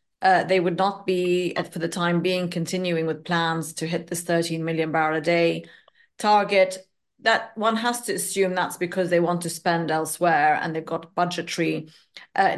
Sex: female